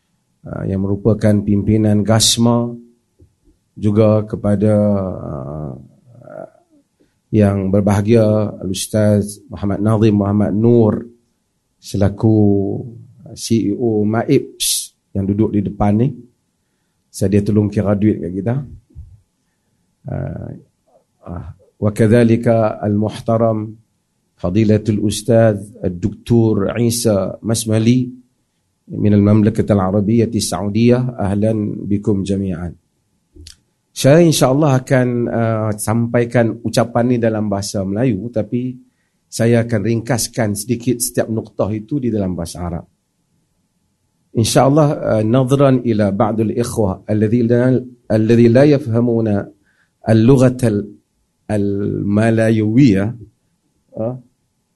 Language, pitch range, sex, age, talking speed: Malay, 100-120 Hz, male, 40-59, 90 wpm